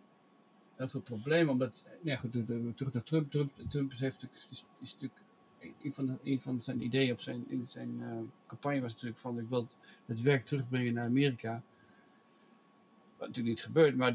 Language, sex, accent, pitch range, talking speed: English, male, Dutch, 125-150 Hz, 180 wpm